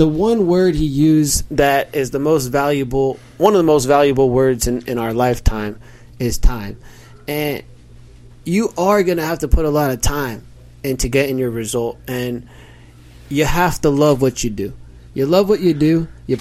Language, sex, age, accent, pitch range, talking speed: English, male, 20-39, American, 120-150 Hz, 190 wpm